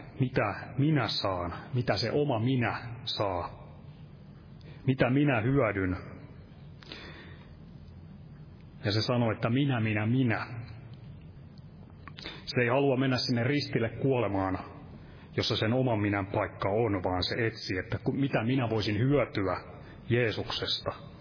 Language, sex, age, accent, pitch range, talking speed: Finnish, male, 30-49, native, 105-130 Hz, 115 wpm